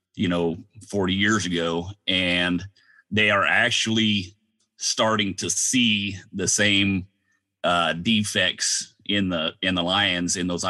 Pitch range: 90-105 Hz